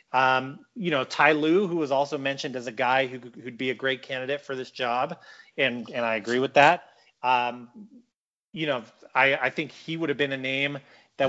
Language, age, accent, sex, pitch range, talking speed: English, 30-49, American, male, 125-145 Hz, 215 wpm